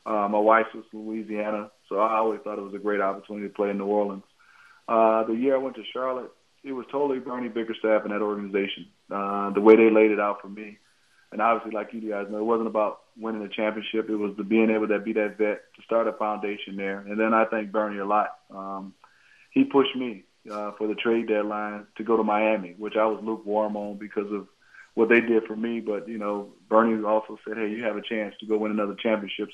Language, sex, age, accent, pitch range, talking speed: English, male, 20-39, American, 105-115 Hz, 240 wpm